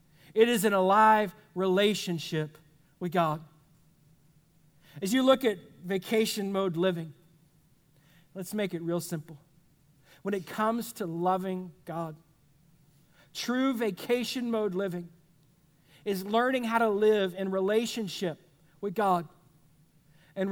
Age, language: 50-69, English